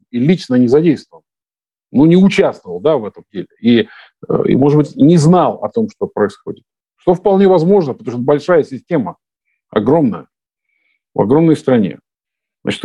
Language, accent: Russian, native